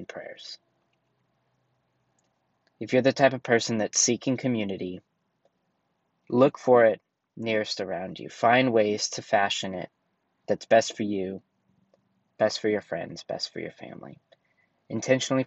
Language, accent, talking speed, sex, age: English, American, 130 wpm, male, 20-39